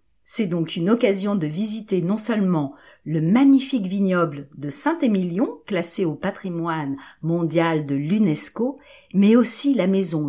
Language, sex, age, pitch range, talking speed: French, female, 50-69, 165-235 Hz, 135 wpm